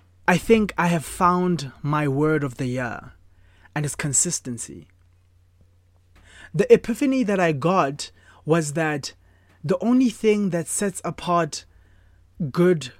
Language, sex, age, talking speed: English, male, 20-39, 125 wpm